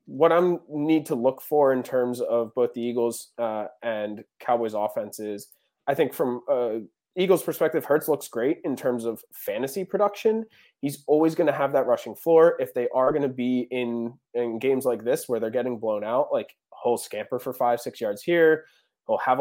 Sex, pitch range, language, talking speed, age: male, 115-155 Hz, English, 200 wpm, 20-39